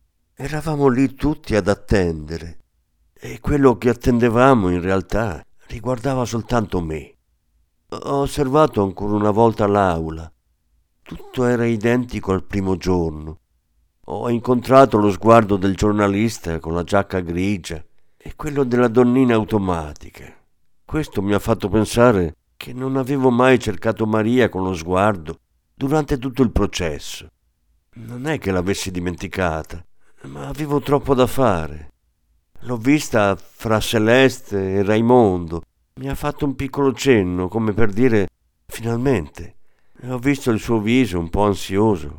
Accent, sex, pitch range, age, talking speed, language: native, male, 85-125 Hz, 50-69, 130 wpm, Italian